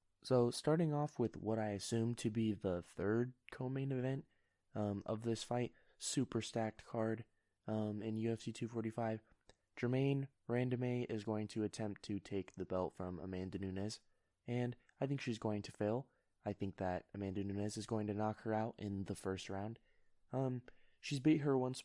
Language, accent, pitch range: English, American, 95-115 Hz